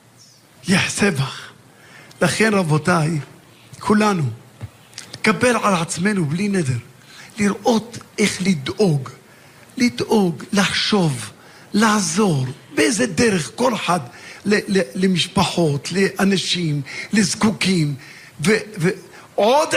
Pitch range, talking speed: 150-215 Hz, 75 wpm